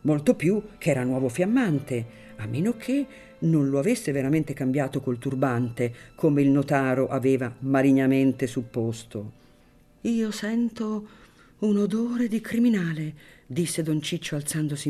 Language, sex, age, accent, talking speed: Italian, female, 50-69, native, 130 wpm